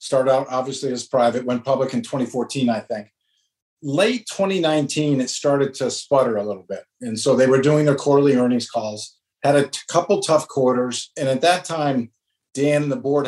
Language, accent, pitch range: English, American, 125-145 Hz